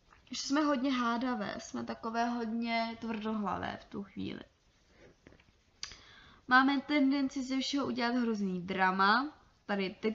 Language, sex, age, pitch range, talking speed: Czech, female, 20-39, 205-260 Hz, 120 wpm